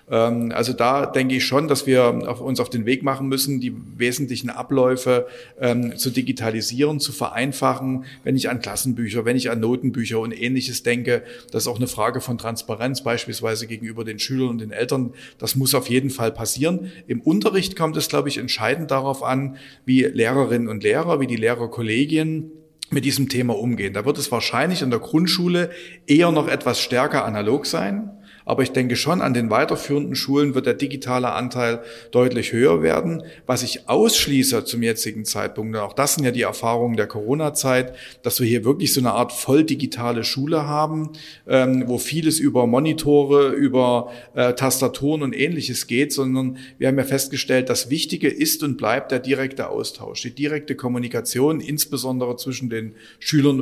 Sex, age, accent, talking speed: male, 40-59, German, 170 wpm